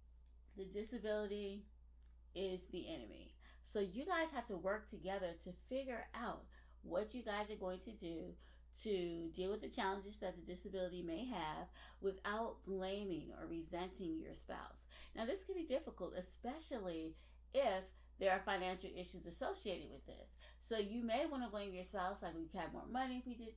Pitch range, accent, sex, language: 175-215 Hz, American, female, English